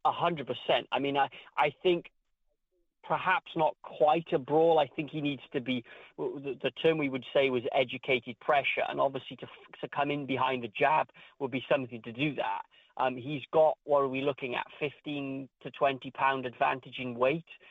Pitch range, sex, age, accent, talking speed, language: 130-150 Hz, male, 30-49, British, 195 wpm, English